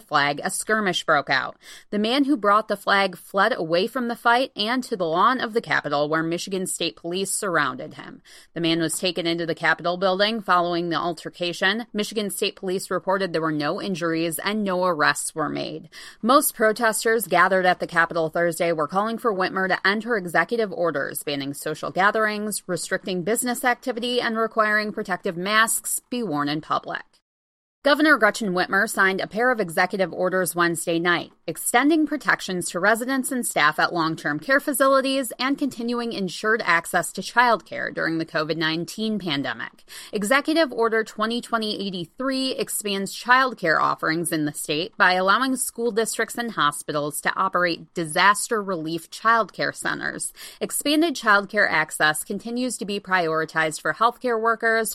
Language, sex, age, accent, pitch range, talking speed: English, female, 30-49, American, 170-230 Hz, 165 wpm